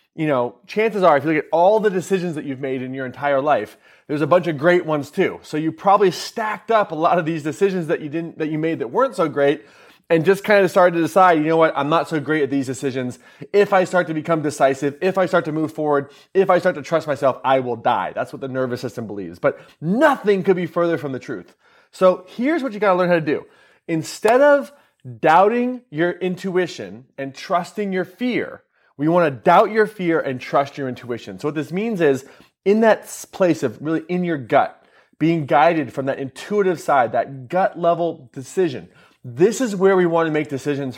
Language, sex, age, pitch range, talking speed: English, male, 30-49, 140-185 Hz, 230 wpm